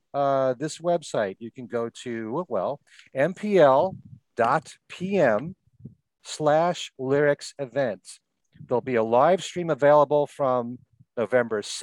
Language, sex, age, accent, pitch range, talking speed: English, male, 40-59, American, 125-170 Hz, 95 wpm